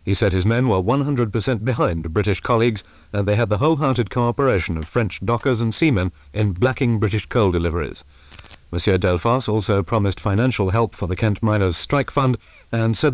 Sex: male